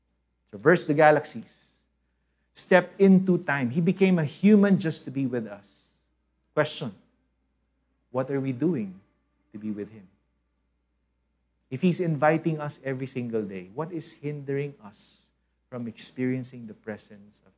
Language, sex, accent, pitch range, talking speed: English, male, Filipino, 90-150 Hz, 135 wpm